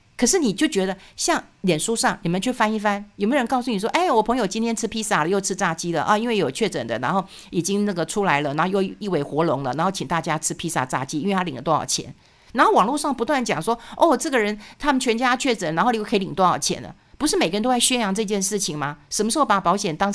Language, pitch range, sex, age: Chinese, 170-240 Hz, female, 50-69